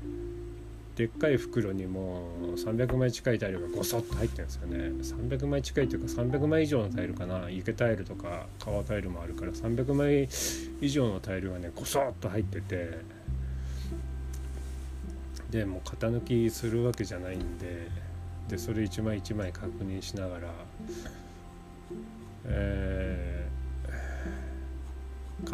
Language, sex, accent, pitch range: Japanese, male, native, 65-115 Hz